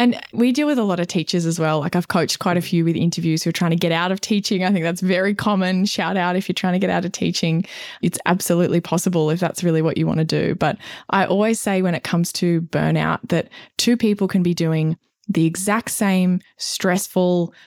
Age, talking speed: 20-39, 240 wpm